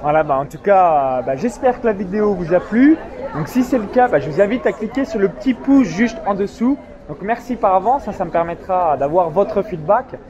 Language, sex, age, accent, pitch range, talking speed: French, male, 20-39, French, 185-235 Hz, 245 wpm